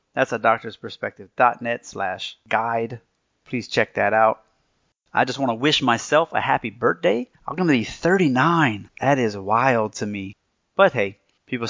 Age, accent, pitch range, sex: 30-49, American, 105-120 Hz, male